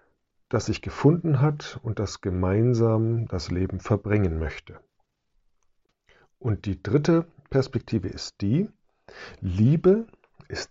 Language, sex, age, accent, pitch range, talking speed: German, male, 50-69, German, 95-130 Hz, 105 wpm